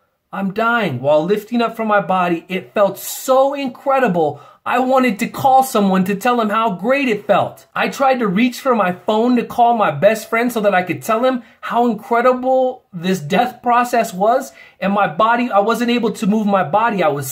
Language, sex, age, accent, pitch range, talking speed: English, male, 30-49, American, 180-235 Hz, 210 wpm